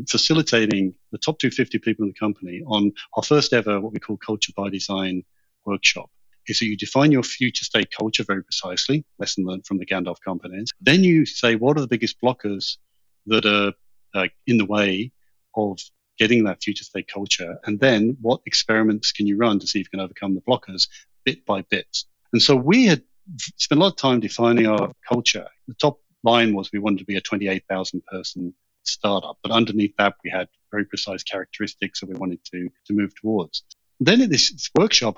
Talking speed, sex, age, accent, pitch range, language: 200 wpm, male, 40-59, British, 100-130 Hz, English